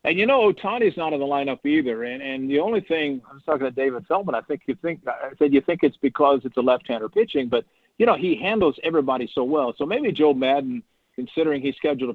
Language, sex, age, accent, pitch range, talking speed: English, male, 50-69, American, 130-160 Hz, 240 wpm